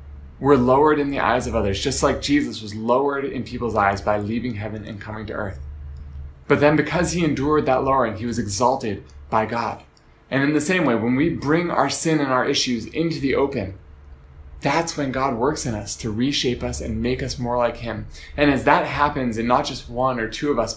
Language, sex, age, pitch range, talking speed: English, male, 20-39, 105-135 Hz, 220 wpm